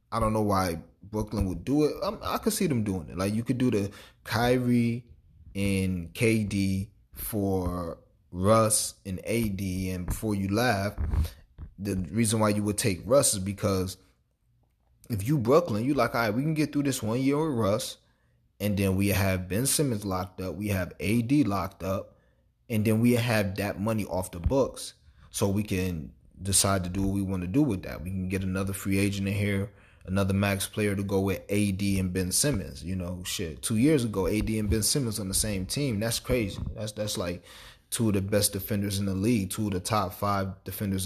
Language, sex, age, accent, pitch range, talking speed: English, male, 30-49, American, 95-110 Hz, 205 wpm